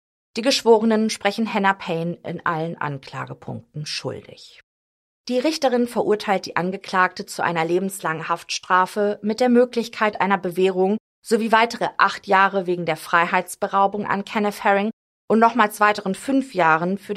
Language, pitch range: German, 175-215 Hz